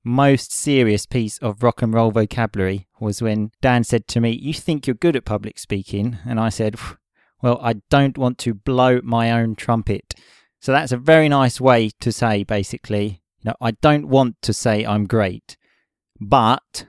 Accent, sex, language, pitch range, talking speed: British, male, English, 105-130 Hz, 185 wpm